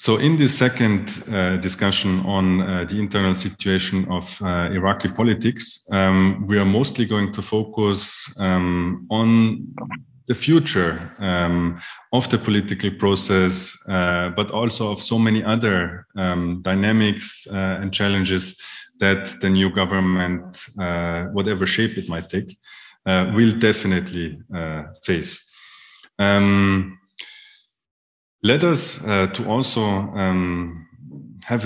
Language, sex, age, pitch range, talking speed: English, male, 30-49, 90-105 Hz, 125 wpm